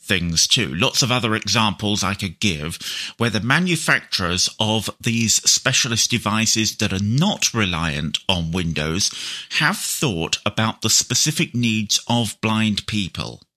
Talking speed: 135 wpm